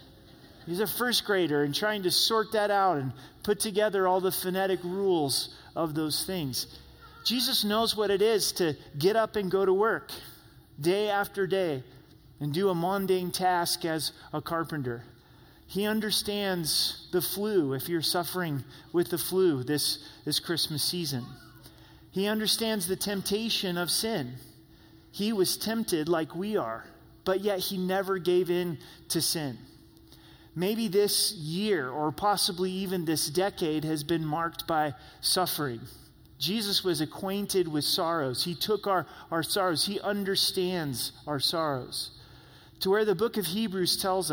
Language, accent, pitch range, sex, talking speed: English, American, 150-195 Hz, male, 150 wpm